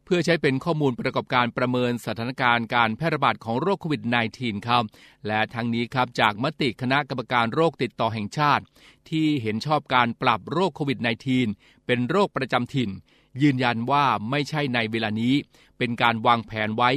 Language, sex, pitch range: Thai, male, 115-140 Hz